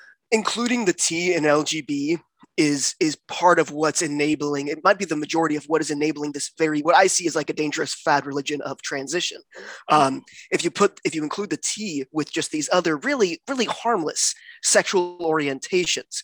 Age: 20-39